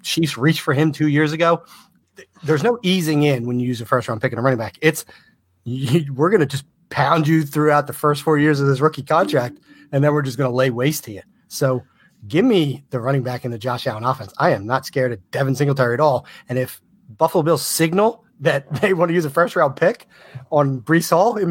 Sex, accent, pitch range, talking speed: male, American, 125-160 Hz, 245 wpm